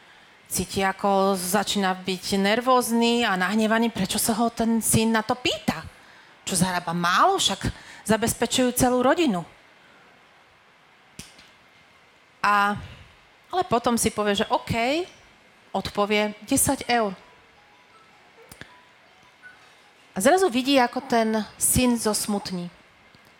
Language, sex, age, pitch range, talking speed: Slovak, female, 40-59, 195-245 Hz, 100 wpm